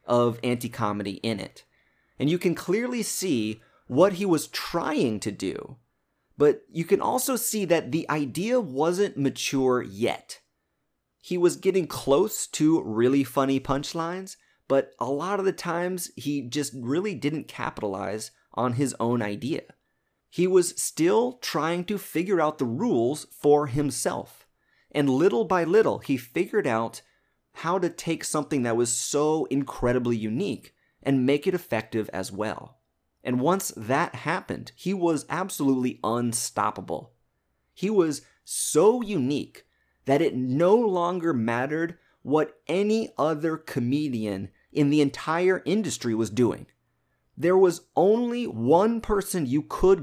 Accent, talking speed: American, 140 wpm